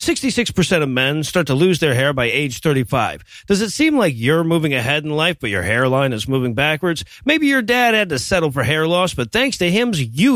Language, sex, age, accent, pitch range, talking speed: English, male, 40-59, American, 150-225 Hz, 230 wpm